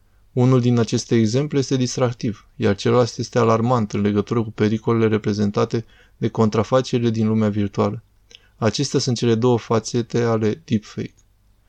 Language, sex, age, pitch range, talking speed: Romanian, male, 20-39, 105-125 Hz, 140 wpm